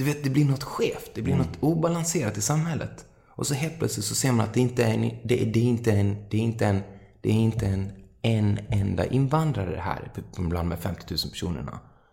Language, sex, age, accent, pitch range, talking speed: Swedish, male, 30-49, native, 90-125 Hz, 185 wpm